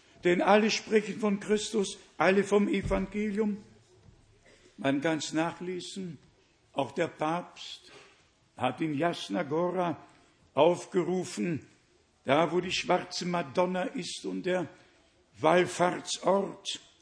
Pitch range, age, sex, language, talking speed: 155-205 Hz, 60-79, male, German, 100 wpm